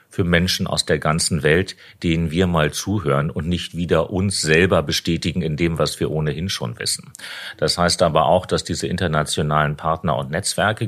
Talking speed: 180 wpm